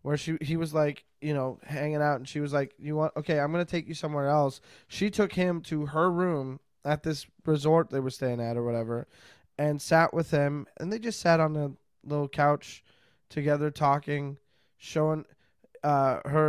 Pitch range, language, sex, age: 140-165 Hz, English, male, 20-39